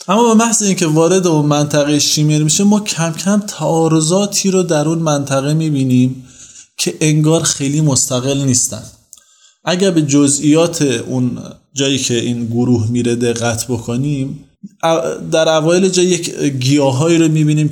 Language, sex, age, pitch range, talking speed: Persian, male, 20-39, 125-165 Hz, 135 wpm